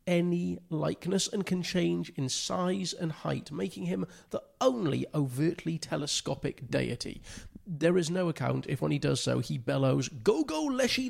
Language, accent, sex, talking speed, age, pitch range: English, British, male, 150 wpm, 40-59, 140-180 Hz